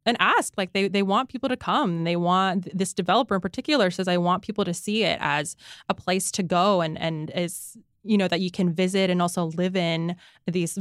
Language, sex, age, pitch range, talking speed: English, female, 20-39, 175-205 Hz, 230 wpm